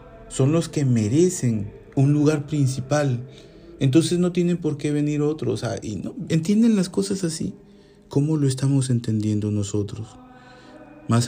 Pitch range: 110-145 Hz